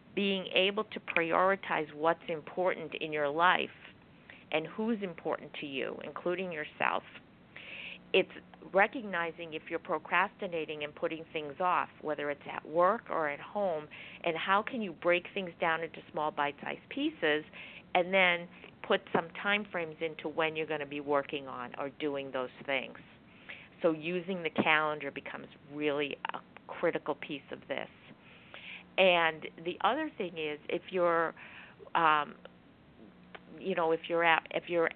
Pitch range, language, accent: 145-180 Hz, English, American